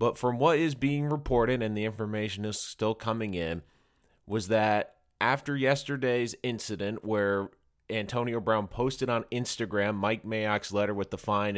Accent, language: American, English